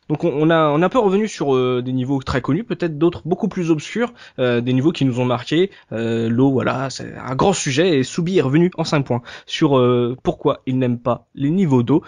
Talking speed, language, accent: 250 wpm, French, French